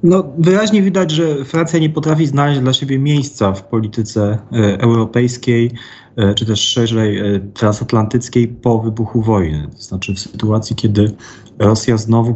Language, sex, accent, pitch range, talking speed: Polish, male, native, 105-115 Hz, 150 wpm